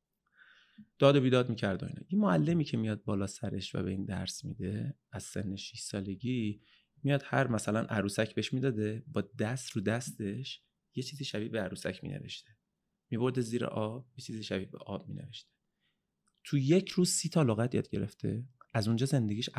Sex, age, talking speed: male, 30-49, 170 wpm